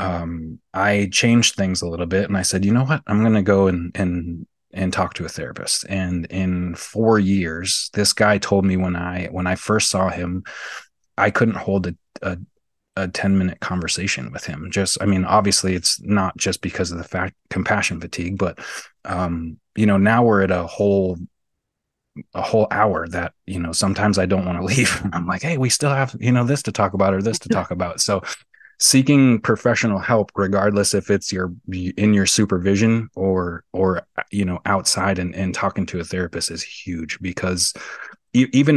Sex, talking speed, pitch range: male, 200 wpm, 90-105 Hz